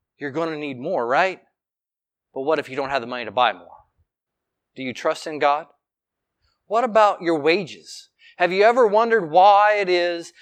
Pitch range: 150-215 Hz